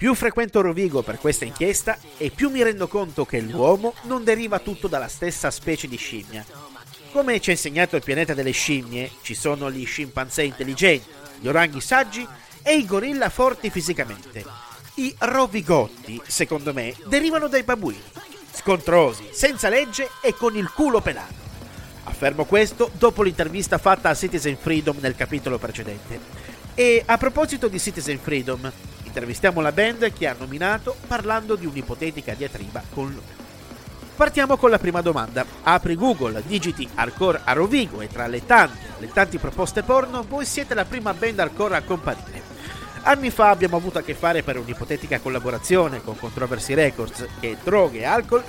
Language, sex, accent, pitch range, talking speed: Italian, male, native, 130-220 Hz, 160 wpm